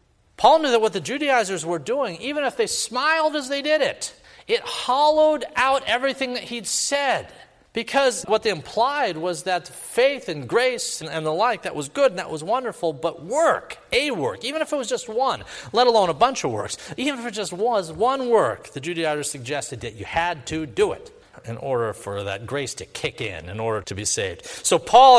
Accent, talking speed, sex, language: American, 215 wpm, male, English